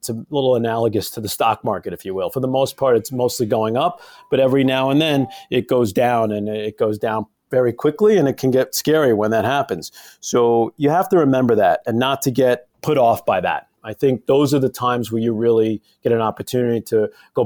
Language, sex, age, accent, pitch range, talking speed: English, male, 40-59, American, 115-145 Hz, 235 wpm